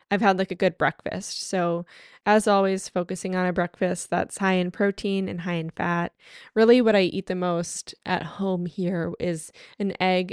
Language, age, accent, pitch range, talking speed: English, 10-29, American, 180-220 Hz, 190 wpm